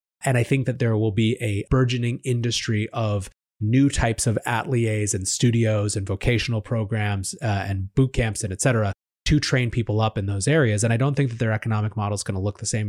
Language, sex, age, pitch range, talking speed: English, male, 30-49, 105-125 Hz, 225 wpm